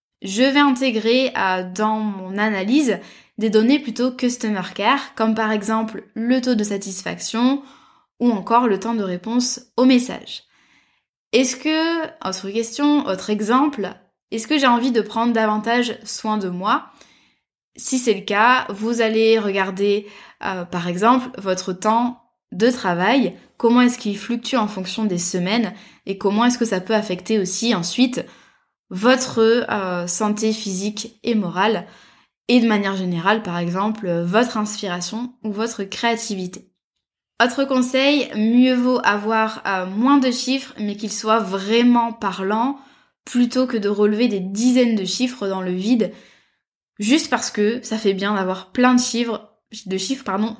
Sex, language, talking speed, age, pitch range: female, French, 155 wpm, 20-39, 200-245 Hz